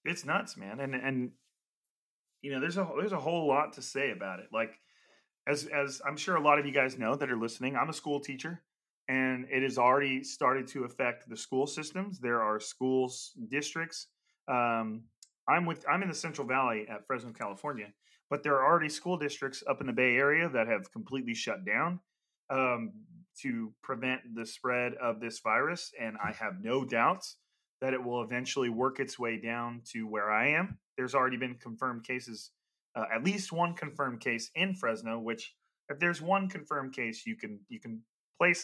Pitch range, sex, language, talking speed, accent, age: 120-150 Hz, male, English, 195 wpm, American, 30-49